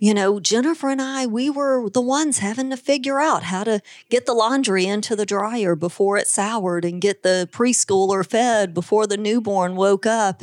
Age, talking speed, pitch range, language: 40-59, 195 wpm, 190-255 Hz, English